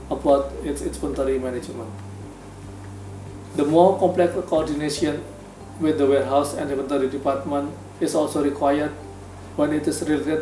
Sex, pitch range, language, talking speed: male, 100-150 Hz, Indonesian, 120 wpm